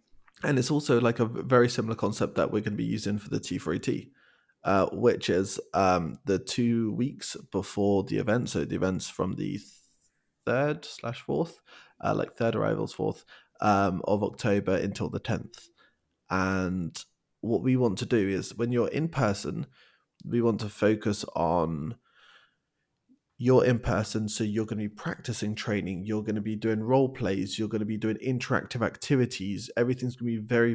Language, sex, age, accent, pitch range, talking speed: English, male, 20-39, British, 100-125 Hz, 180 wpm